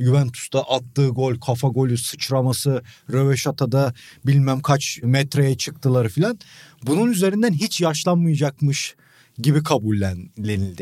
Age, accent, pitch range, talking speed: 40-59, native, 125-155 Hz, 100 wpm